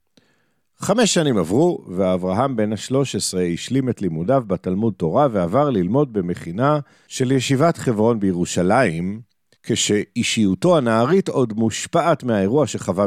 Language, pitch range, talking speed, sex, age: Hebrew, 95-140 Hz, 110 wpm, male, 50-69